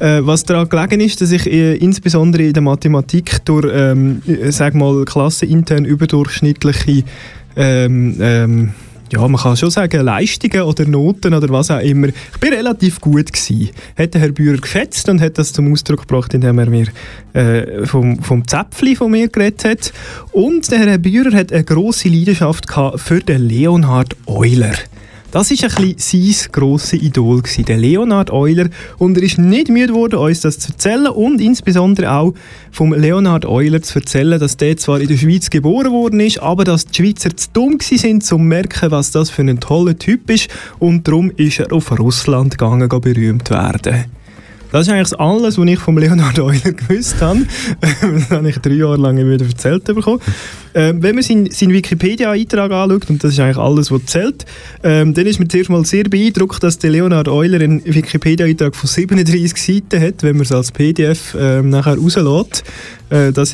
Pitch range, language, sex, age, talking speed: 135-180 Hz, German, male, 20-39, 175 wpm